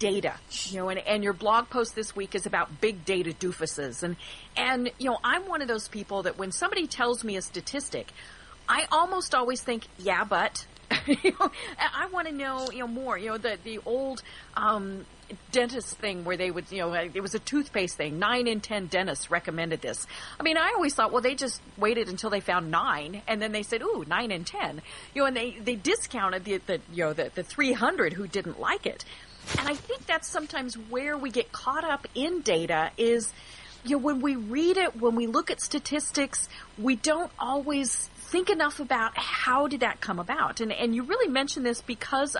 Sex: female